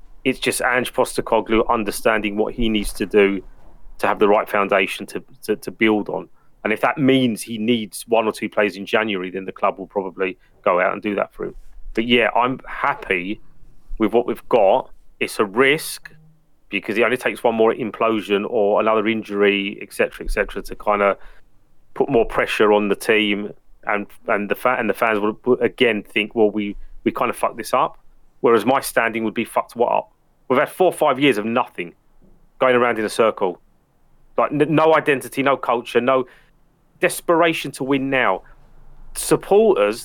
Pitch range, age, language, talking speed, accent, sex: 110-145 Hz, 30-49, English, 195 wpm, British, male